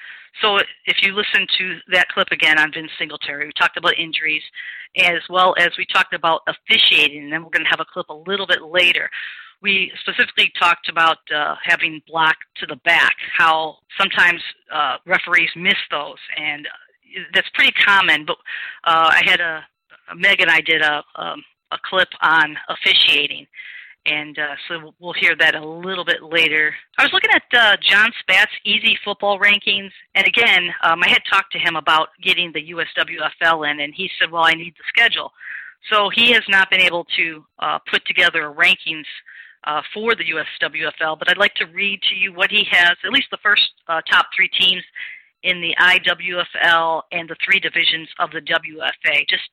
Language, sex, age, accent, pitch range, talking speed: English, female, 40-59, American, 160-195 Hz, 190 wpm